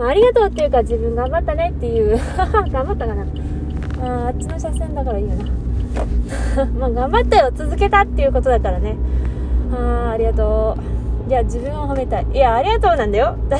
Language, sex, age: Japanese, female, 20-39